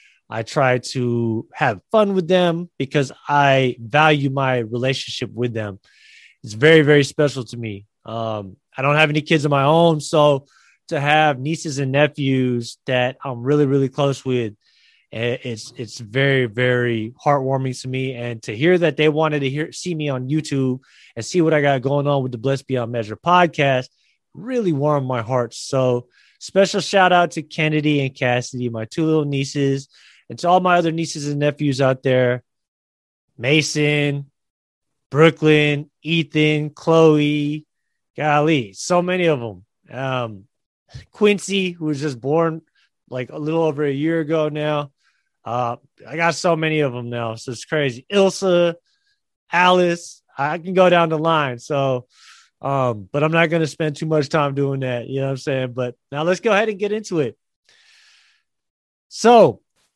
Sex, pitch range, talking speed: male, 125-160 Hz, 170 wpm